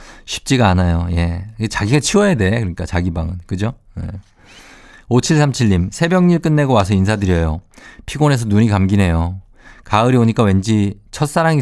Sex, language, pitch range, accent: male, Korean, 95-125 Hz, native